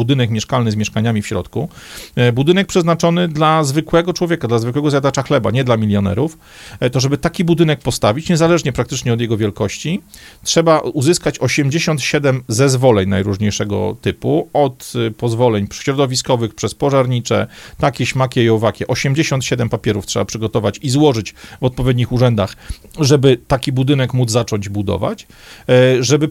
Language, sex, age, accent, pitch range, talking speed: Polish, male, 40-59, native, 110-140 Hz, 135 wpm